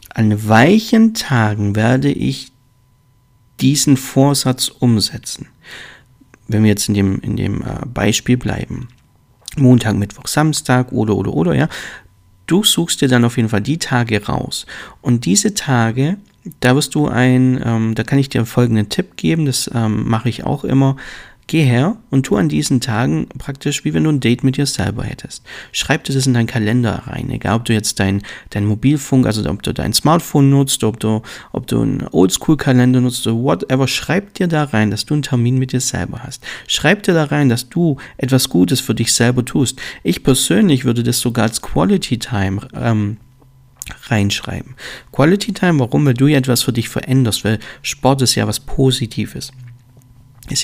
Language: German